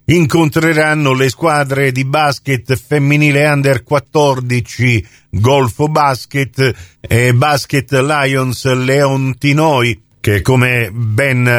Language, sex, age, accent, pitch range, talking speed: Italian, male, 50-69, native, 115-140 Hz, 90 wpm